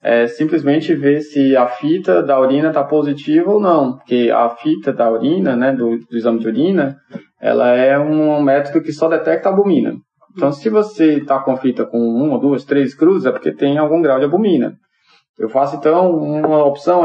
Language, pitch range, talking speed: Portuguese, 130-165 Hz, 200 wpm